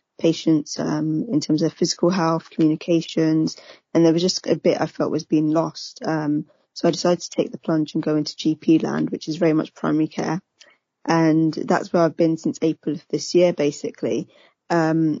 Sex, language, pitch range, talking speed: female, English, 155-170 Hz, 195 wpm